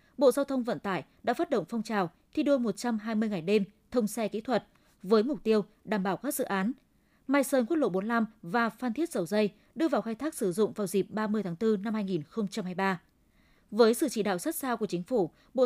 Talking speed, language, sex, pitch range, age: 230 wpm, Vietnamese, female, 200-250 Hz, 20-39